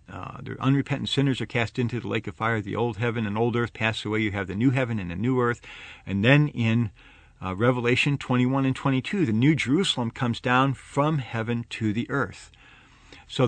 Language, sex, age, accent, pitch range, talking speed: English, male, 50-69, American, 105-140 Hz, 210 wpm